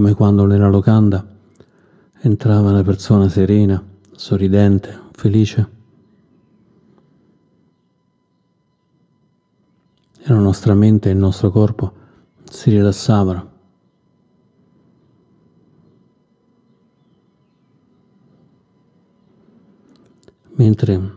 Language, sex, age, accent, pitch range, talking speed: Italian, male, 40-59, native, 100-110 Hz, 60 wpm